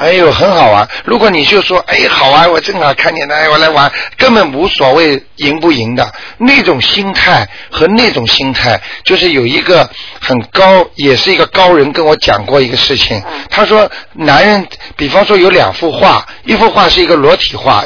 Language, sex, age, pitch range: Chinese, male, 50-69, 130-200 Hz